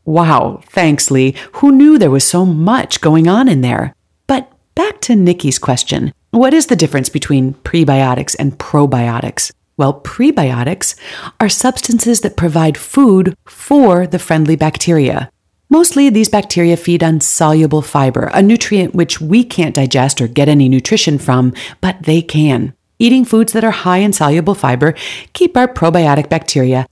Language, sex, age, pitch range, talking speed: English, female, 40-59, 140-195 Hz, 155 wpm